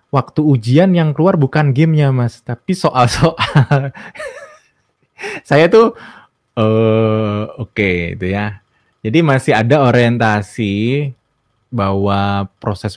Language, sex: Indonesian, male